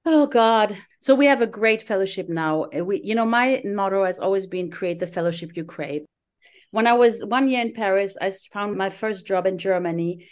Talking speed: 210 wpm